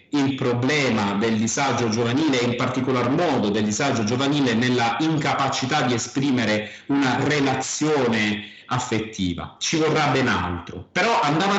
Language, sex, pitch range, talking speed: Italian, male, 115-165 Hz, 130 wpm